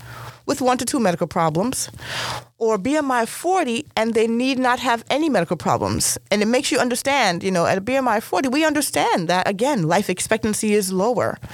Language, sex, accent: English, female, American